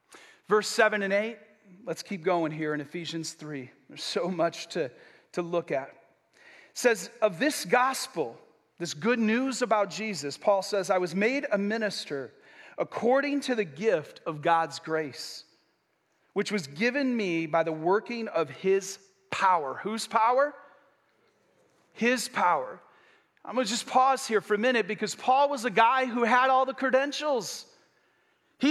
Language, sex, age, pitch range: English, male, 40-59, 190-280 Hz